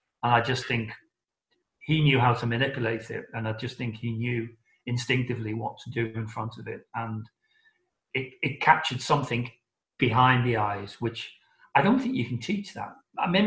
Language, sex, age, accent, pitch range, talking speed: English, male, 40-59, British, 120-175 Hz, 185 wpm